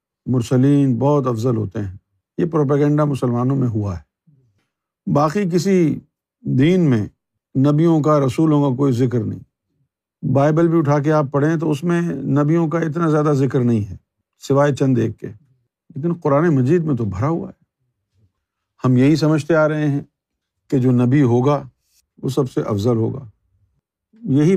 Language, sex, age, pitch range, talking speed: Urdu, male, 50-69, 120-150 Hz, 160 wpm